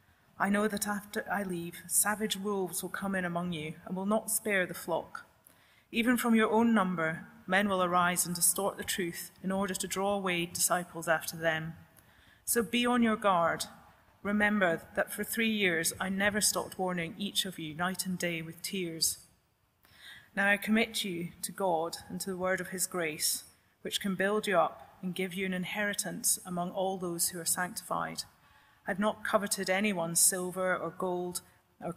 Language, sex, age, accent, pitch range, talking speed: English, female, 30-49, British, 170-200 Hz, 185 wpm